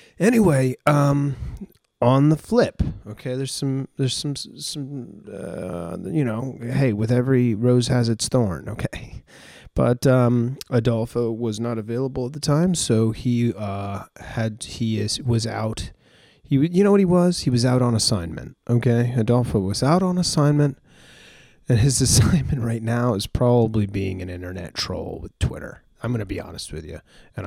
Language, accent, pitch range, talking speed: English, American, 100-130 Hz, 170 wpm